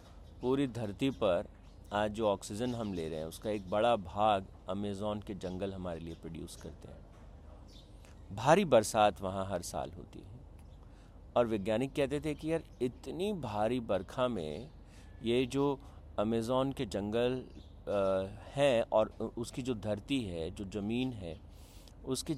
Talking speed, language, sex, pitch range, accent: 145 wpm, Hindi, male, 95-140 Hz, native